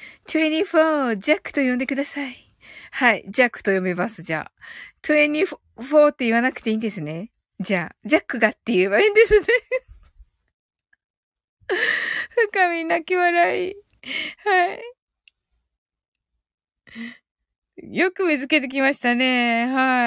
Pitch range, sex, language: 240-340 Hz, female, Japanese